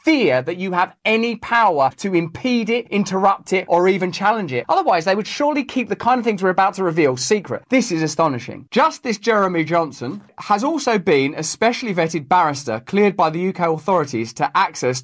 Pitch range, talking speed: 175-235 Hz, 195 wpm